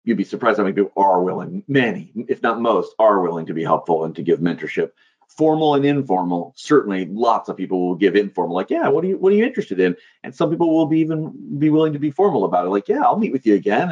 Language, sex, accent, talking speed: English, male, American, 265 wpm